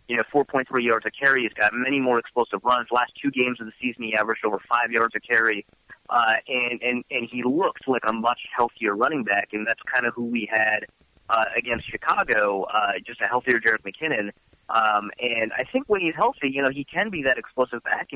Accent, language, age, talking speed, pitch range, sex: American, English, 30-49, 230 wpm, 110-130 Hz, male